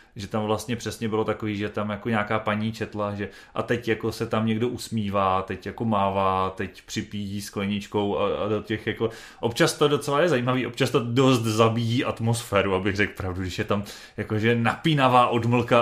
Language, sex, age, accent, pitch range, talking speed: Czech, male, 30-49, native, 110-130 Hz, 190 wpm